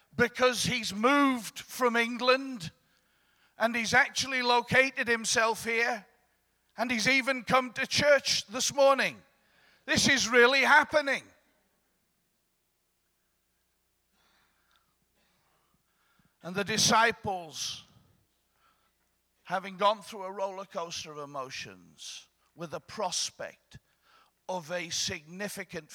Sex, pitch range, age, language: male, 140-230 Hz, 50-69, English